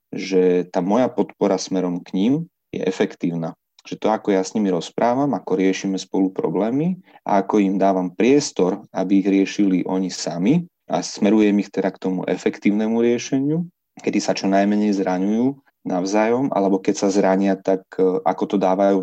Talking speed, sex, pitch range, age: 165 wpm, male, 95-110 Hz, 30-49